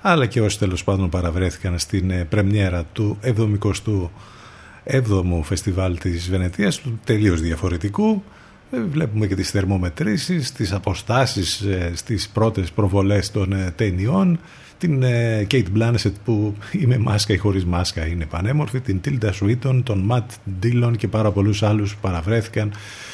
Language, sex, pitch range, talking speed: Greek, male, 95-120 Hz, 130 wpm